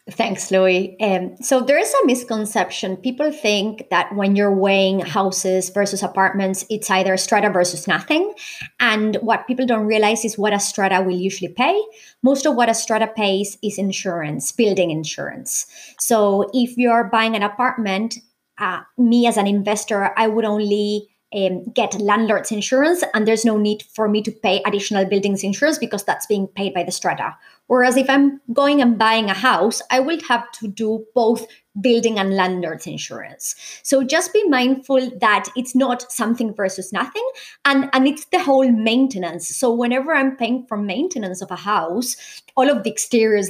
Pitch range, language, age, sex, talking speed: 200-250 Hz, English, 30-49, male, 175 wpm